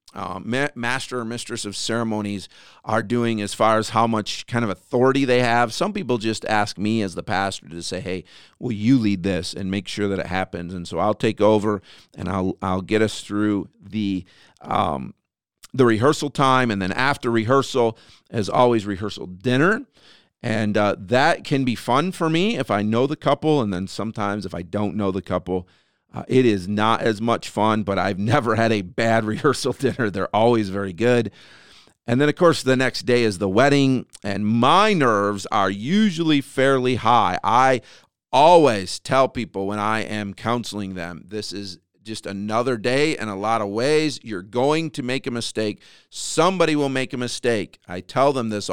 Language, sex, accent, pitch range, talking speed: English, male, American, 100-130 Hz, 190 wpm